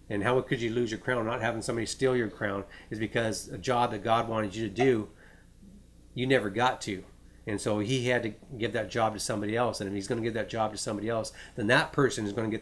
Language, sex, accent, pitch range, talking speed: English, male, American, 100-125 Hz, 265 wpm